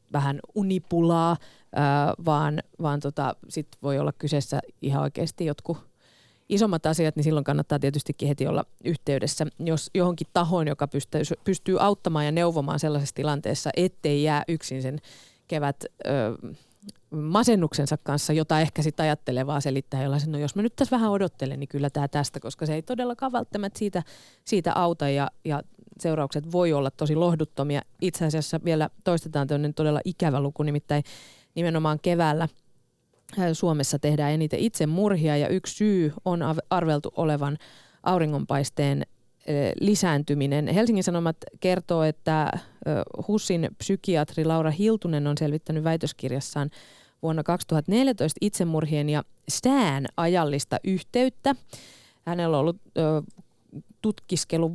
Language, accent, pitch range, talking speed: Finnish, native, 145-175 Hz, 130 wpm